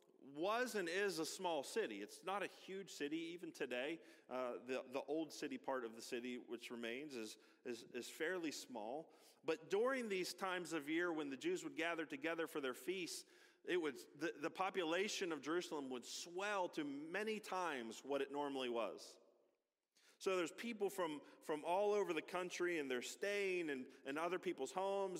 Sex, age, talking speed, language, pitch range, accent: male, 40-59, 185 wpm, English, 135-185 Hz, American